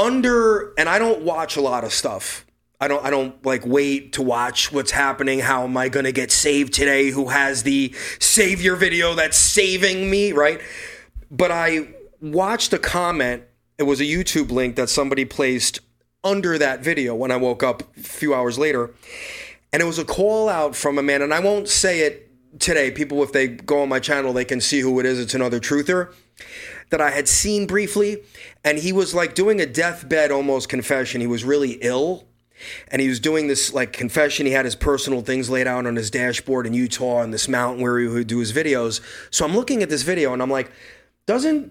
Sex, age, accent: male, 30-49, American